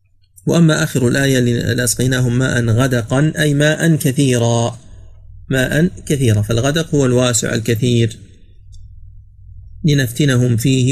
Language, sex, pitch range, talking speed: Arabic, male, 105-135 Hz, 95 wpm